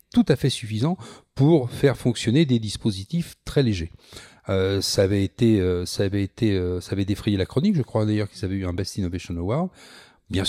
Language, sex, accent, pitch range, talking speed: French, male, French, 105-145 Hz, 165 wpm